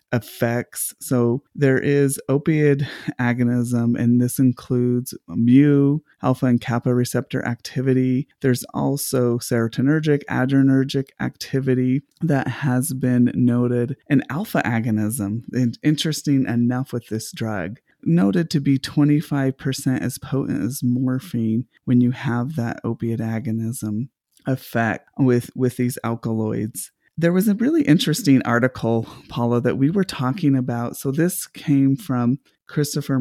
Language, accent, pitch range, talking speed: English, American, 120-140 Hz, 125 wpm